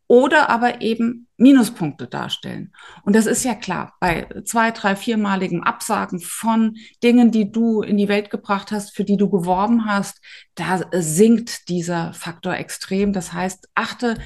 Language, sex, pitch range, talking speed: German, female, 190-230 Hz, 155 wpm